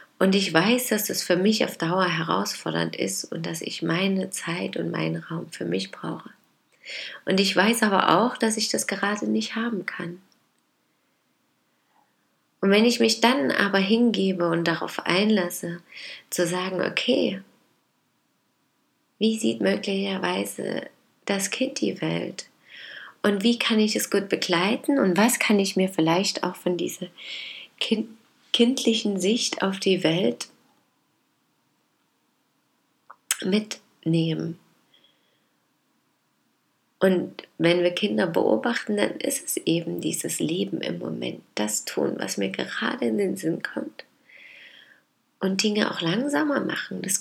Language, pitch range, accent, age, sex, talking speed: German, 180-230 Hz, German, 20-39, female, 135 wpm